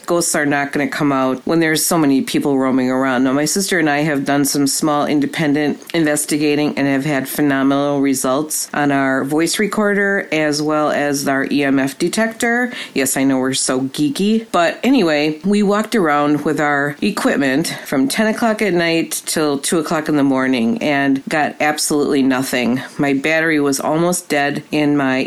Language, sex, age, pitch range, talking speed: English, female, 40-59, 140-175 Hz, 180 wpm